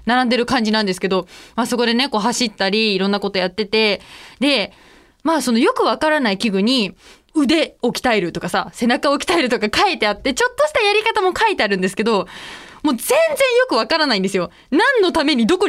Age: 20-39